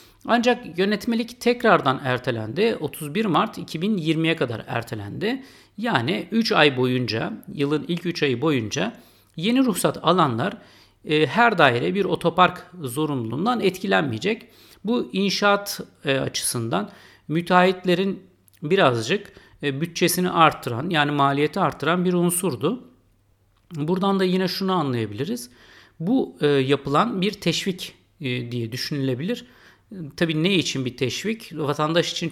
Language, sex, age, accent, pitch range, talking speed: Turkish, male, 60-79, native, 135-195 Hz, 115 wpm